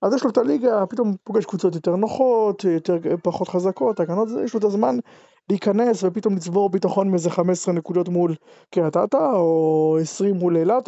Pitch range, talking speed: 170-205 Hz, 175 wpm